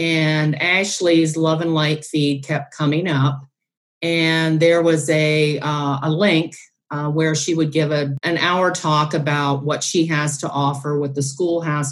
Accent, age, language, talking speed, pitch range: American, 40-59, English, 175 wpm, 145-170 Hz